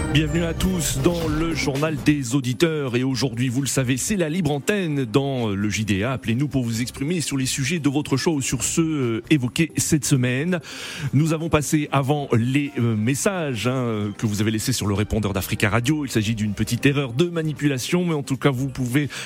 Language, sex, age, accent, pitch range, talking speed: French, male, 30-49, French, 115-155 Hz, 205 wpm